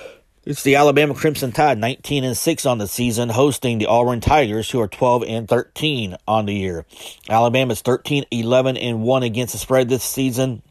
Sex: male